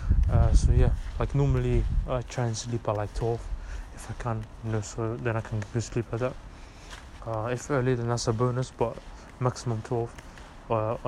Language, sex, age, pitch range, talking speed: English, male, 20-39, 105-125 Hz, 195 wpm